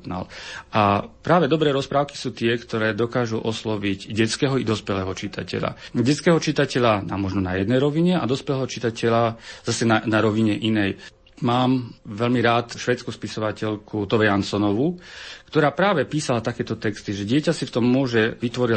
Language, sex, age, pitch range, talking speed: Slovak, male, 40-59, 105-125 Hz, 150 wpm